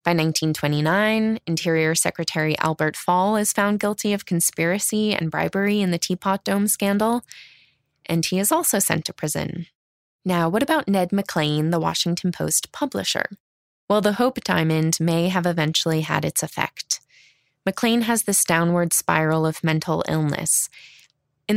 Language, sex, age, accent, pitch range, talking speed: English, female, 20-39, American, 160-205 Hz, 145 wpm